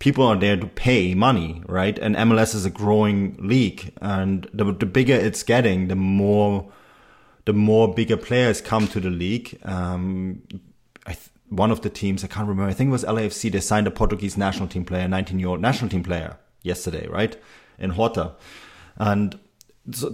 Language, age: English, 30-49